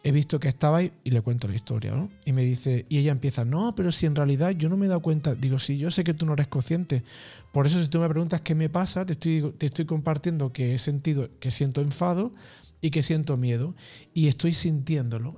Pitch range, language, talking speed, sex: 130-170 Hz, Spanish, 250 wpm, male